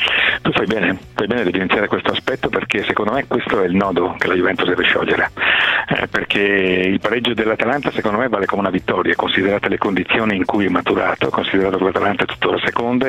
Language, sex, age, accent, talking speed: Italian, male, 50-69, native, 205 wpm